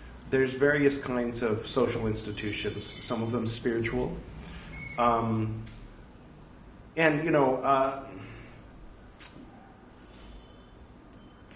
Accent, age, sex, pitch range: American, 30-49, male, 90-120 Hz